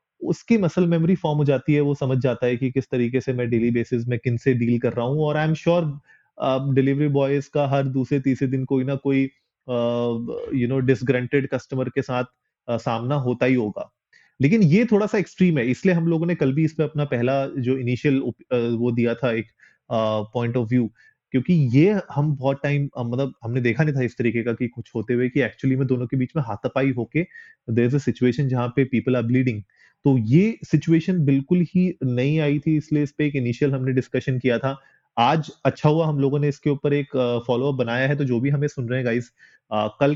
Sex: male